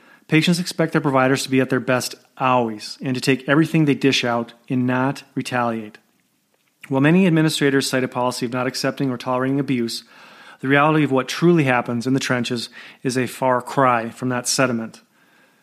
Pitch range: 125-155 Hz